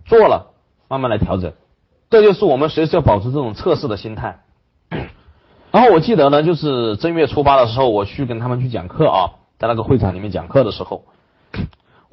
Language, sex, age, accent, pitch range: Chinese, male, 30-49, native, 120-180 Hz